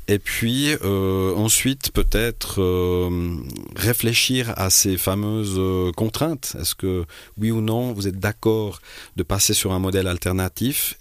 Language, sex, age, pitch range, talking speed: French, male, 40-59, 90-110 Hz, 140 wpm